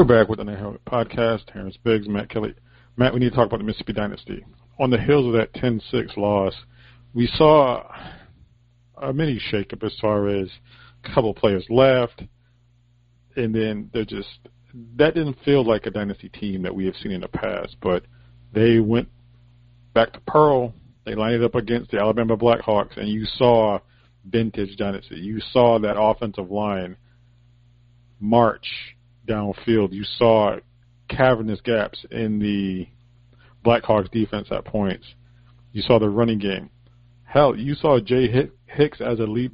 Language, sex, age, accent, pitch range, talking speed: English, male, 50-69, American, 110-120 Hz, 160 wpm